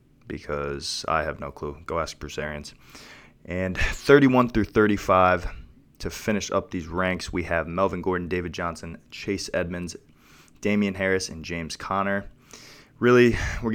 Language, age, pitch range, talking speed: English, 20-39, 85-105 Hz, 145 wpm